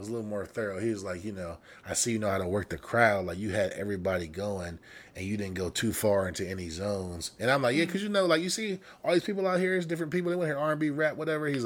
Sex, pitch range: male, 95-130 Hz